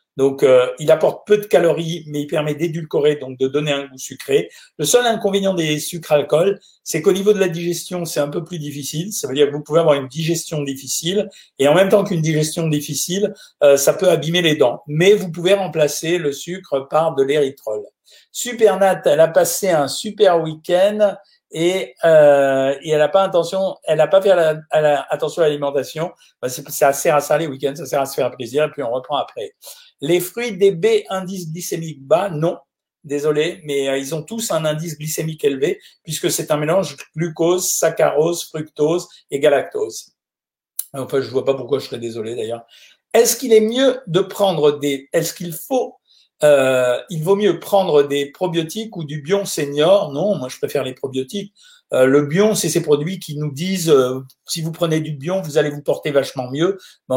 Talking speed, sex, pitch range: 205 wpm, male, 145-190 Hz